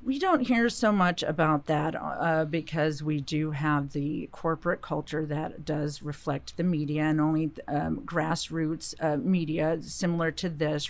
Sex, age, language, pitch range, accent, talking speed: female, 40-59, English, 155-195 Hz, American, 160 wpm